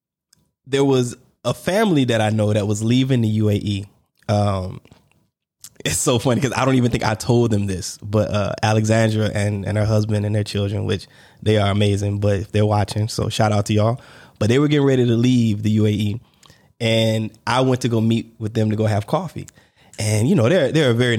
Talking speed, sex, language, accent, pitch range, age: 215 wpm, male, English, American, 110-145 Hz, 20-39